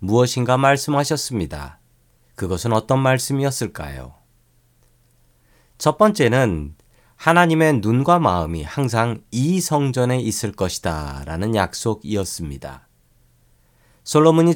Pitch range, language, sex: 95-140 Hz, Korean, male